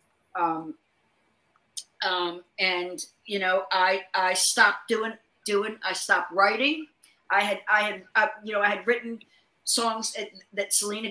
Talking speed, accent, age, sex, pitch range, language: 135 wpm, American, 50-69, female, 195-255 Hz, English